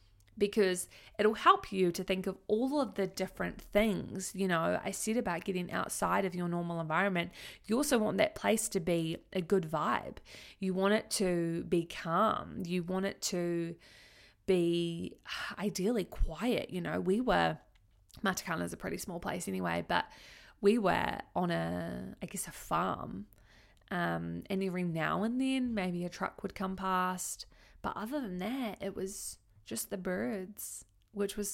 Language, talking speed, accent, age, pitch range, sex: English, 170 wpm, Australian, 20-39, 165-205 Hz, female